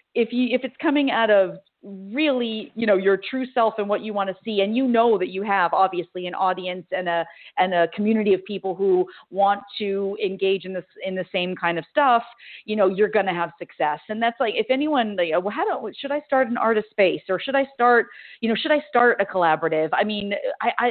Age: 40-59